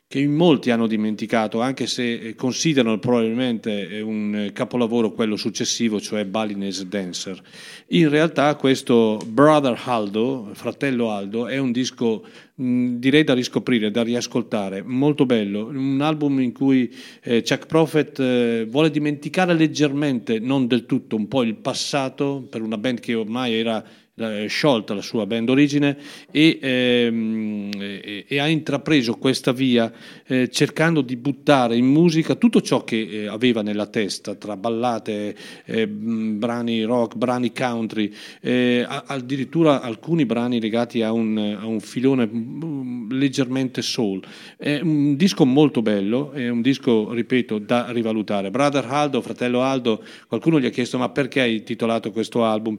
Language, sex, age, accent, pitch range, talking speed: Italian, male, 40-59, native, 110-140 Hz, 145 wpm